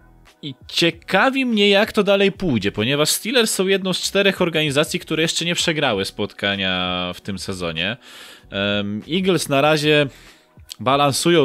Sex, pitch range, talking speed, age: male, 100-145 Hz, 135 wpm, 20-39